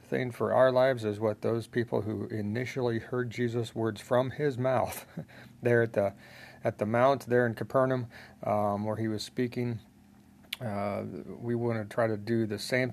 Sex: male